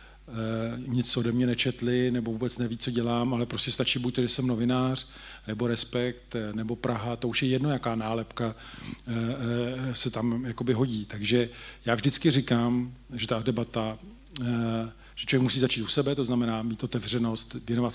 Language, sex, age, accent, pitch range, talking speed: Czech, male, 40-59, native, 115-130 Hz, 155 wpm